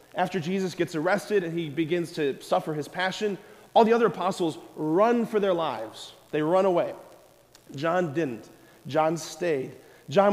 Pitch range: 160-200 Hz